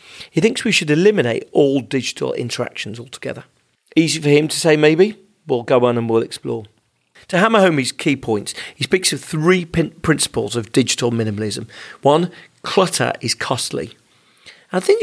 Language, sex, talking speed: English, male, 165 wpm